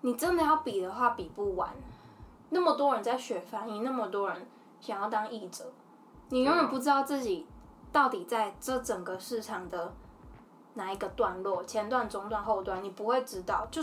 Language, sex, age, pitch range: Chinese, female, 10-29, 215-280 Hz